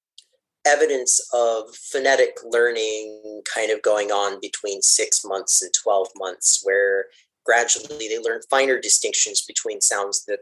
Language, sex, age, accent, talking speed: English, male, 30-49, American, 130 wpm